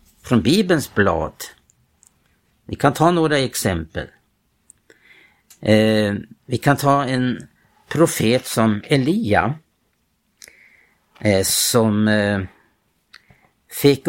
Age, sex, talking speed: 60-79, male, 85 wpm